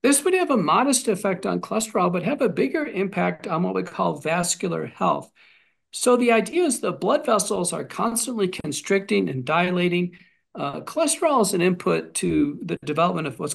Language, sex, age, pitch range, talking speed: English, male, 50-69, 160-205 Hz, 180 wpm